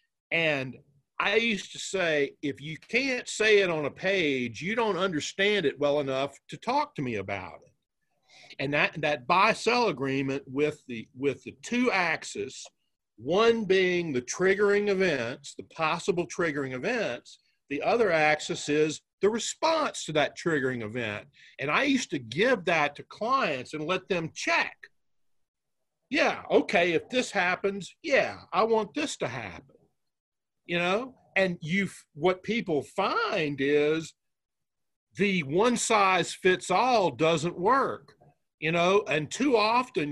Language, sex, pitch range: English, male, 145-205 Hz